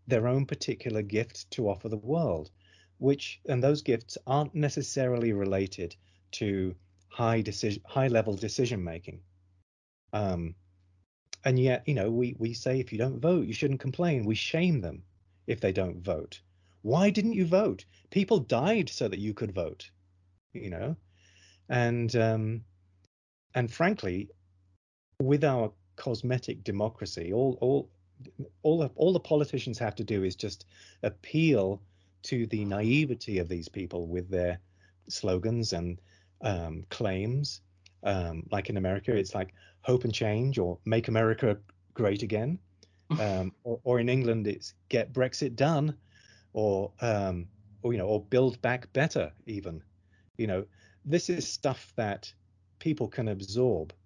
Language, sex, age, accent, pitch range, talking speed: English, male, 30-49, British, 90-125 Hz, 145 wpm